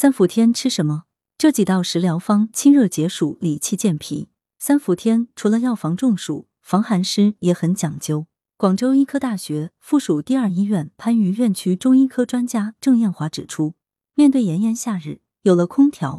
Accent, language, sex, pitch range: native, Chinese, female, 160-240 Hz